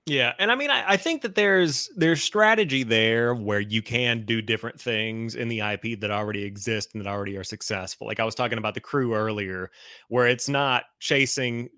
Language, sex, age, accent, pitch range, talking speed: English, male, 30-49, American, 105-125 Hz, 210 wpm